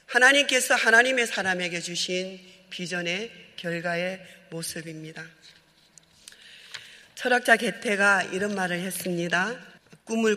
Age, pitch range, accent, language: 40-59, 175-210 Hz, native, Korean